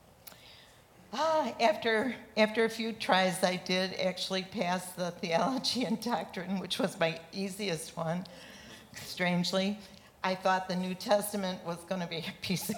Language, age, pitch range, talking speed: English, 60-79, 175-220 Hz, 150 wpm